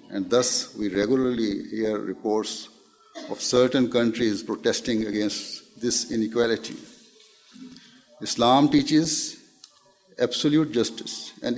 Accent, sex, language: Indian, male, English